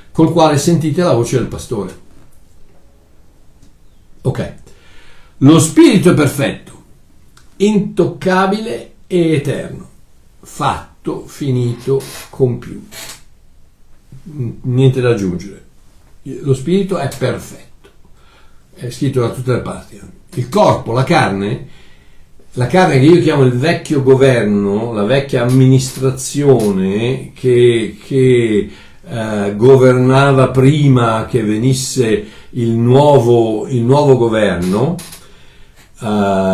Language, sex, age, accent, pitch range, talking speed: Italian, male, 60-79, native, 120-160 Hz, 90 wpm